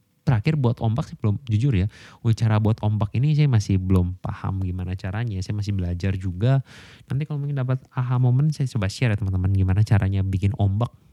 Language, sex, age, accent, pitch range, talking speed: Indonesian, male, 20-39, native, 95-130 Hz, 195 wpm